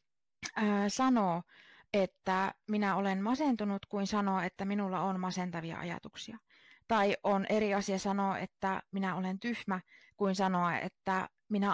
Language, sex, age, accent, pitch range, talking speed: Finnish, female, 30-49, native, 180-225 Hz, 135 wpm